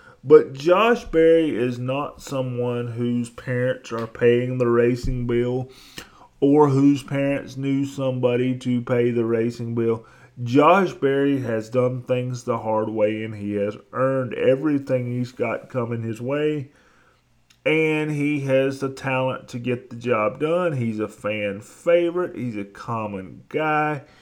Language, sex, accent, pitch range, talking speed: English, male, American, 115-140 Hz, 145 wpm